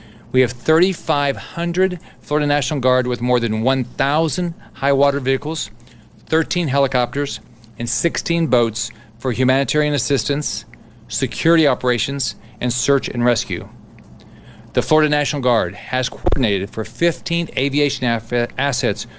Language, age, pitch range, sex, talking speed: English, 40-59, 115-140 Hz, male, 115 wpm